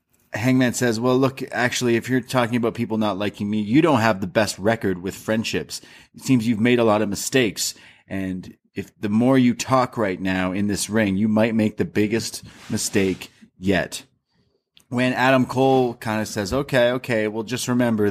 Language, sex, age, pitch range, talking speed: English, male, 30-49, 95-125 Hz, 190 wpm